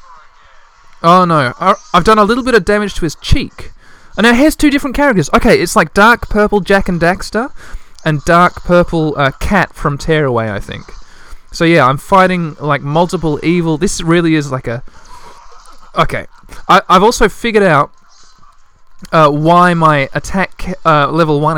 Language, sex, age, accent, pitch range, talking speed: English, male, 20-39, Australian, 140-185 Hz, 170 wpm